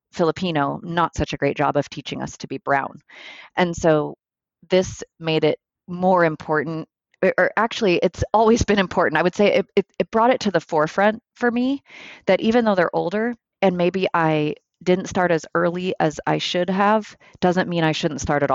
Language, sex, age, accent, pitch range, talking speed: English, female, 30-49, American, 155-195 Hz, 195 wpm